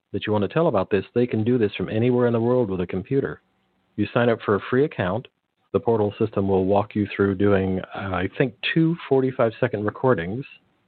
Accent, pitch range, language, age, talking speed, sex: American, 100-120 Hz, English, 50-69, 225 wpm, male